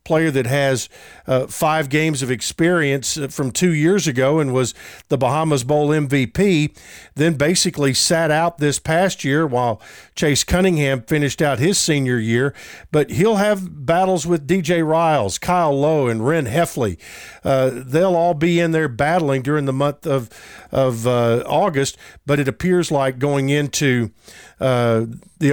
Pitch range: 135-170 Hz